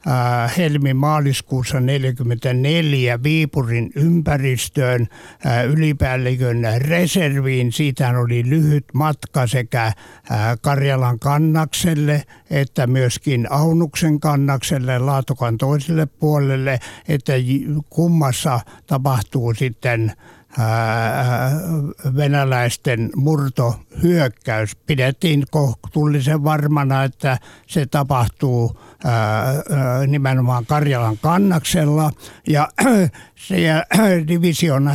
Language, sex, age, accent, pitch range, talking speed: Finnish, male, 60-79, native, 120-150 Hz, 65 wpm